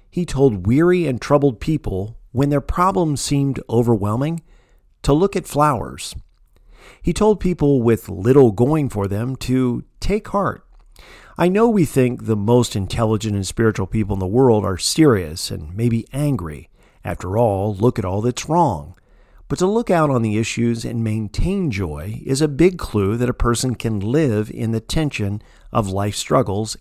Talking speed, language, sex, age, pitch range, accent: 170 wpm, English, male, 50-69, 100-145 Hz, American